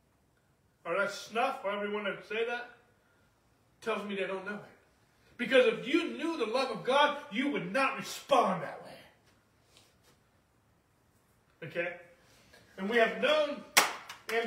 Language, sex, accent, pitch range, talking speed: English, male, American, 215-280 Hz, 140 wpm